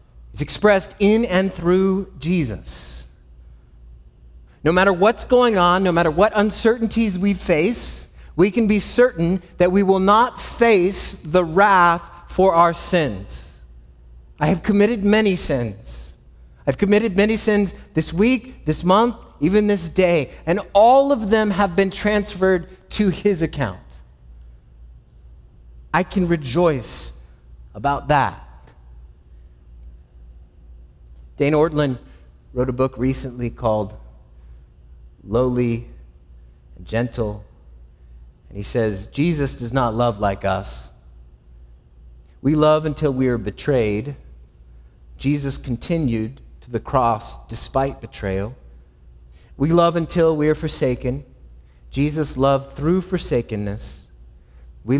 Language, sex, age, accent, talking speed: English, male, 30-49, American, 115 wpm